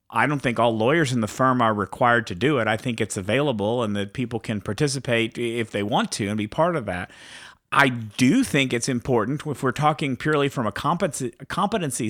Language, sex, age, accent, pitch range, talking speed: English, male, 50-69, American, 115-145 Hz, 215 wpm